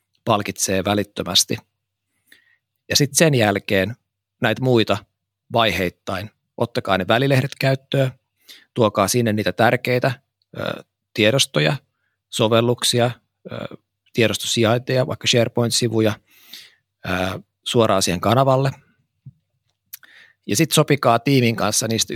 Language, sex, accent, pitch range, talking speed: Finnish, male, native, 100-125 Hz, 85 wpm